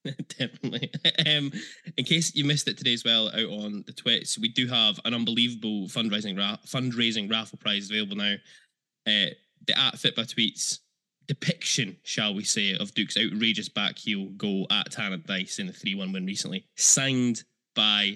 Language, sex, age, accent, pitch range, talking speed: English, male, 10-29, British, 105-145 Hz, 170 wpm